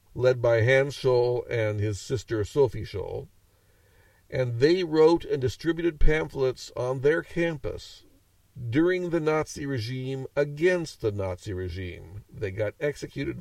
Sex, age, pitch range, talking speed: male, 50-69, 95-130 Hz, 130 wpm